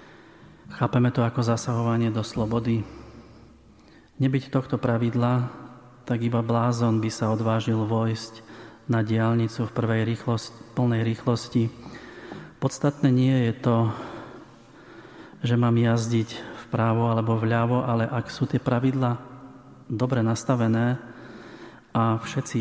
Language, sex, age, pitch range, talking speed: Slovak, male, 30-49, 115-125 Hz, 115 wpm